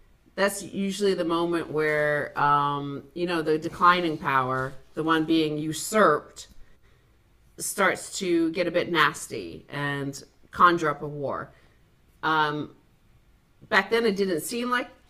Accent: American